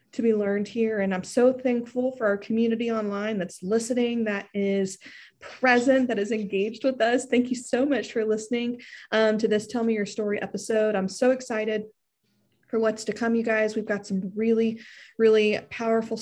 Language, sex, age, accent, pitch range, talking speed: English, female, 20-39, American, 205-250 Hz, 190 wpm